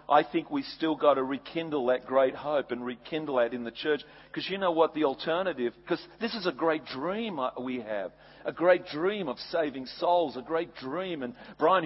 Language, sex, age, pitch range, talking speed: English, male, 40-59, 140-180 Hz, 205 wpm